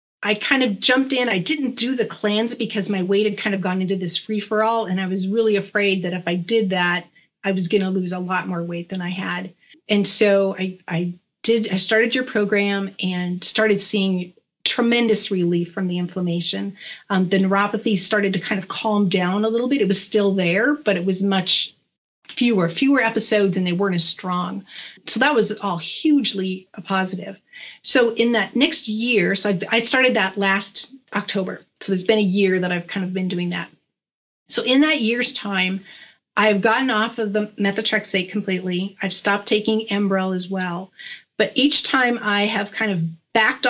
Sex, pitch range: female, 185-225 Hz